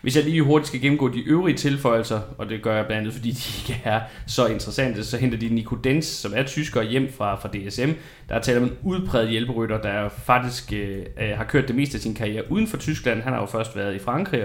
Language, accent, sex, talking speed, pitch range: Danish, native, male, 245 wpm, 110-125 Hz